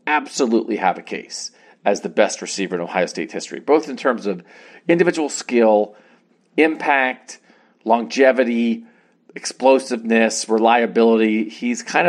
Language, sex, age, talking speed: English, male, 40-59, 120 wpm